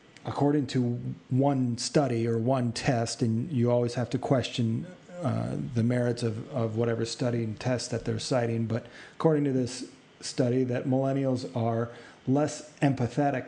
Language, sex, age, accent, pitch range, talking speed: English, male, 30-49, American, 115-135 Hz, 155 wpm